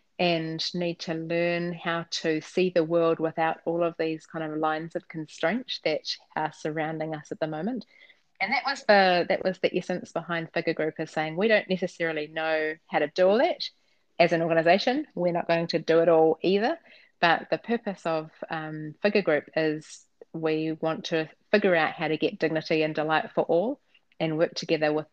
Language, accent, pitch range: English, Australian, 155-180 Hz